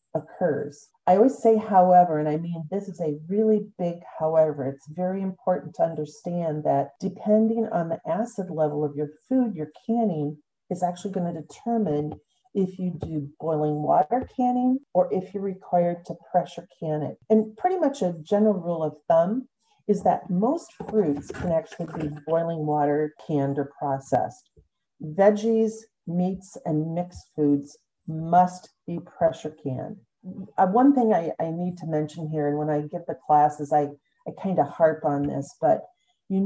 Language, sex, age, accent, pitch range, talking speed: English, female, 40-59, American, 155-200 Hz, 170 wpm